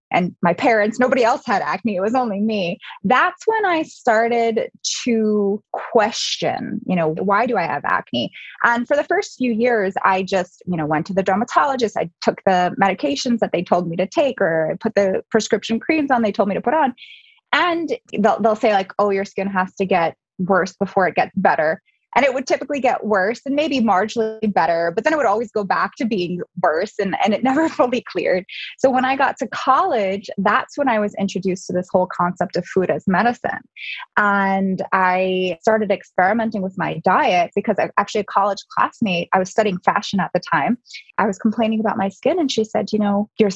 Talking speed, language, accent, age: 215 wpm, English, American, 20-39